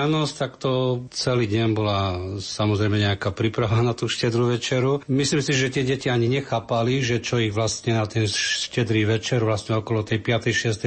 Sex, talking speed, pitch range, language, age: male, 180 wpm, 110-130 Hz, Slovak, 40-59